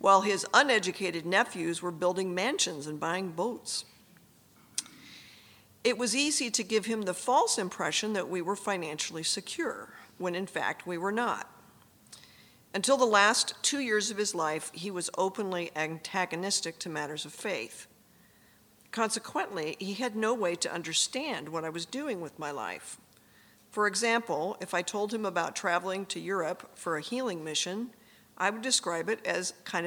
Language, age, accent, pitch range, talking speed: English, 50-69, American, 170-215 Hz, 160 wpm